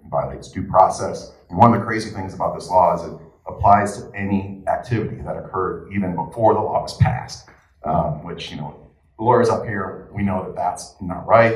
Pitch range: 80-100 Hz